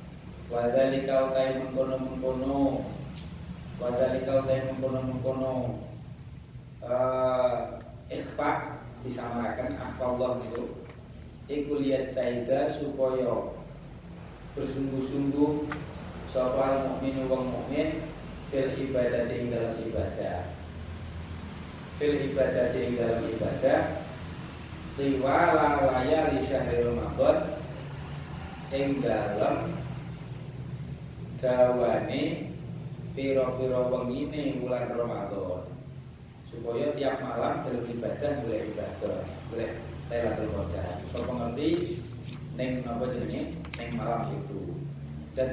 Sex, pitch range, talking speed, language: male, 115-135 Hz, 70 wpm, Indonesian